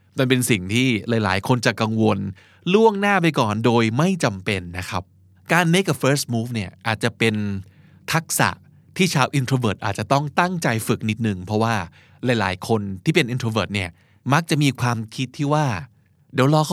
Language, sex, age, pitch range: Thai, male, 20-39, 110-160 Hz